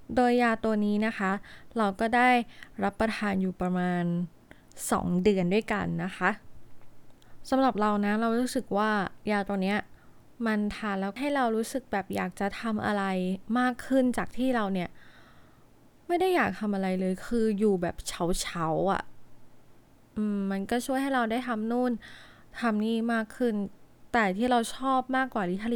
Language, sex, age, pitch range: Thai, female, 20-39, 195-240 Hz